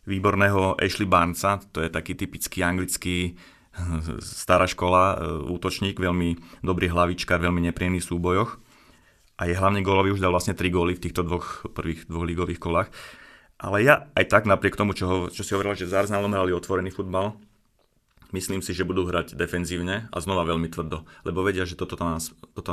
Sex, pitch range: male, 85-100 Hz